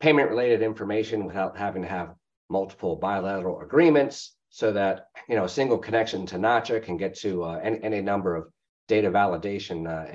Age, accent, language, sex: 40-59, American, English, male